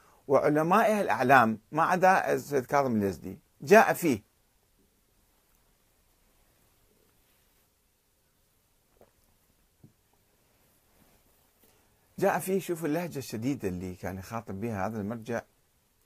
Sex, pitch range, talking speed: male, 115-170 Hz, 65 wpm